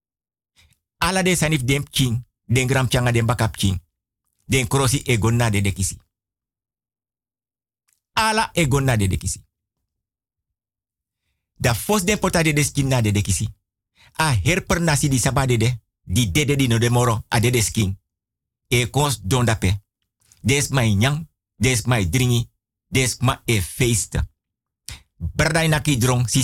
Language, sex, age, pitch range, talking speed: Dutch, male, 50-69, 105-170 Hz, 130 wpm